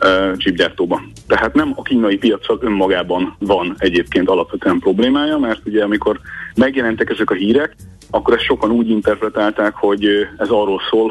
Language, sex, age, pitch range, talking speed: Hungarian, male, 30-49, 95-110 Hz, 145 wpm